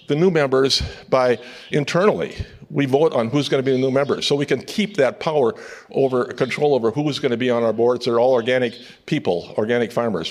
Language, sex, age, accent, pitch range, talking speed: English, male, 50-69, American, 120-145 Hz, 225 wpm